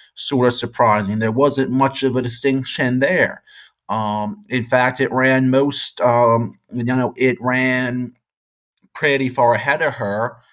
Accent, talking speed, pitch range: American, 150 wpm, 115-140 Hz